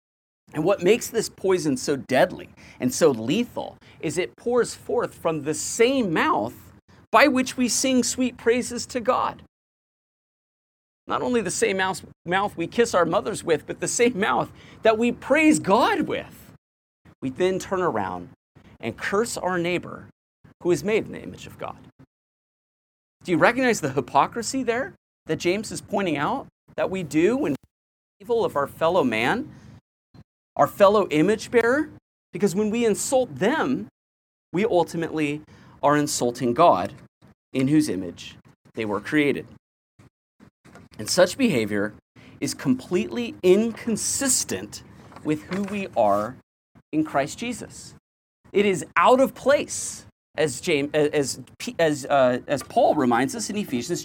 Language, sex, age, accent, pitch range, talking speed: English, male, 40-59, American, 145-235 Hz, 140 wpm